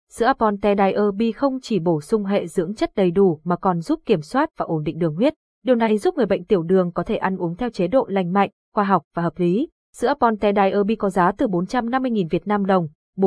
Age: 20-39